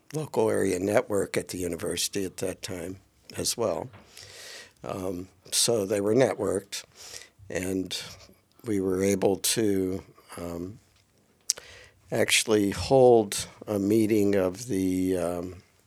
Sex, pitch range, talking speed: male, 95-105 Hz, 110 wpm